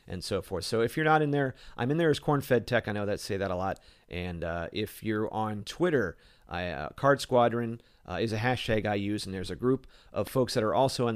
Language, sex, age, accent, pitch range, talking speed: English, male, 40-59, American, 90-130 Hz, 245 wpm